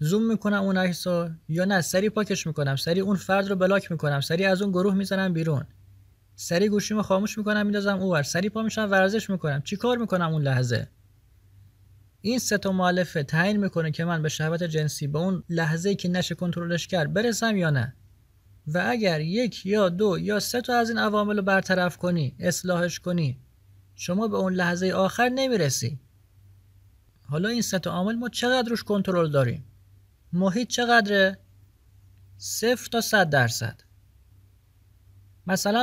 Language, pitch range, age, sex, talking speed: Persian, 135-210 Hz, 30-49, male, 150 wpm